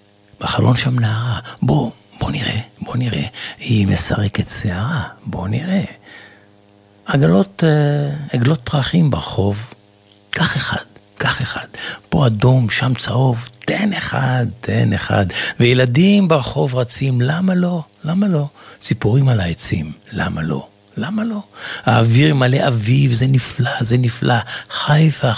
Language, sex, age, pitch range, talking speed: Hebrew, male, 50-69, 100-145 Hz, 120 wpm